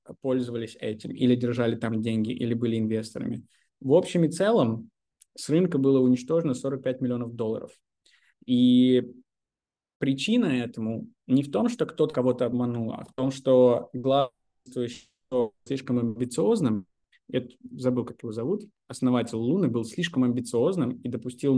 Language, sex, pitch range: Russian, male, 115-130 Hz